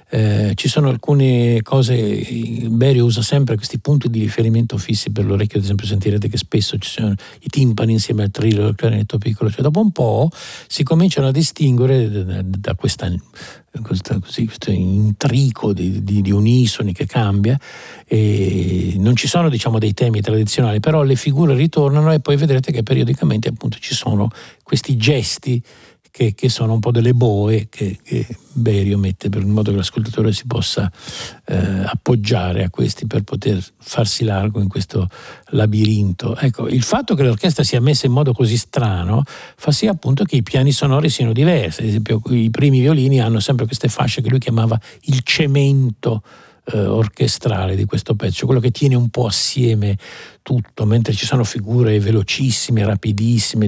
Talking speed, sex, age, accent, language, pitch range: 170 wpm, male, 50-69, native, Italian, 105-135 Hz